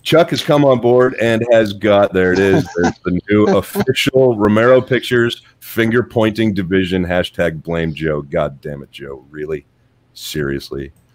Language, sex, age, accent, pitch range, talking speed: English, male, 40-59, American, 80-95 Hz, 150 wpm